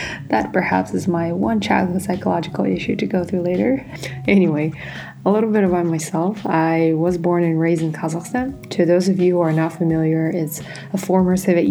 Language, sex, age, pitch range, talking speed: English, female, 20-39, 165-185 Hz, 190 wpm